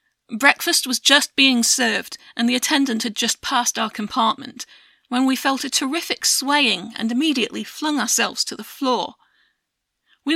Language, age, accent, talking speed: English, 40-59, British, 155 wpm